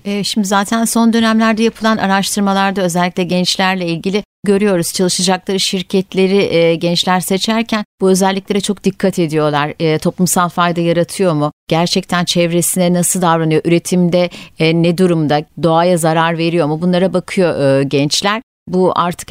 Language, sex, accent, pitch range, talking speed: Turkish, female, native, 175-220 Hz, 120 wpm